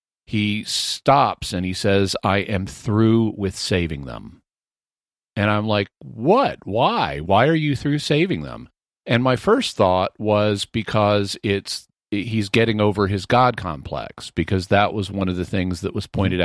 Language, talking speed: English, 165 wpm